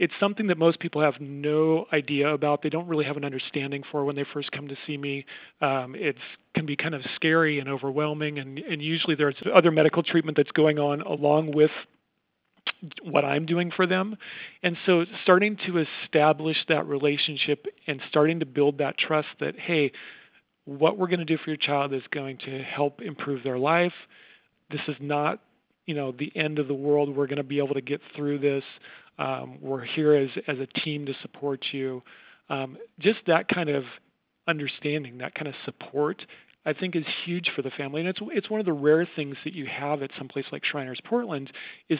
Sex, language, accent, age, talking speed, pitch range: male, English, American, 40-59, 205 wpm, 140-160 Hz